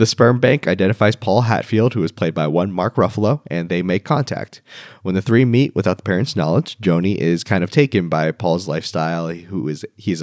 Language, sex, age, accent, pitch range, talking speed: English, male, 20-39, American, 85-115 Hz, 210 wpm